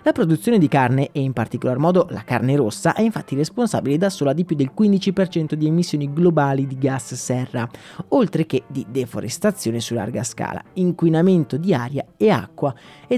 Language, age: Italian, 30-49